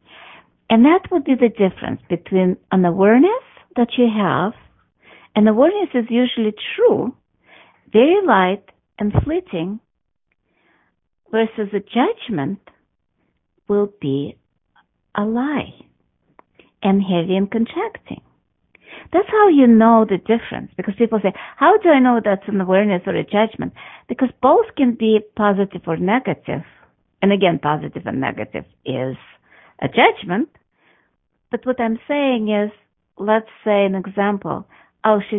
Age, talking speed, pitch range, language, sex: 50-69, 130 wpm, 190-255 Hz, English, female